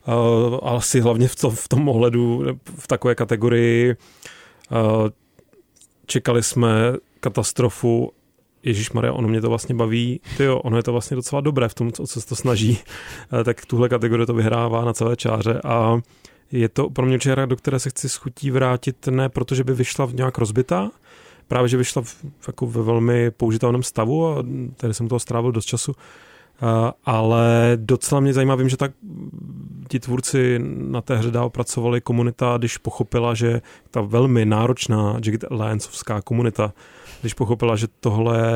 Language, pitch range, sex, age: Czech, 115-130 Hz, male, 30-49